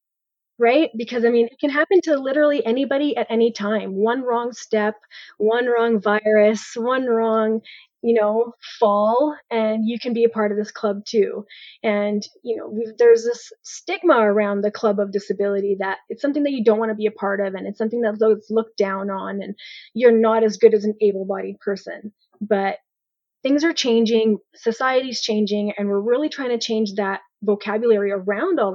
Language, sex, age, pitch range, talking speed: English, female, 20-39, 205-240 Hz, 190 wpm